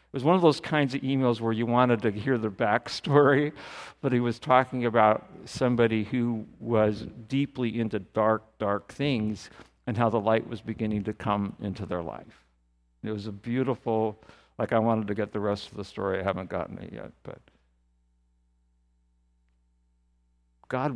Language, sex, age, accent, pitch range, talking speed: English, male, 50-69, American, 95-150 Hz, 170 wpm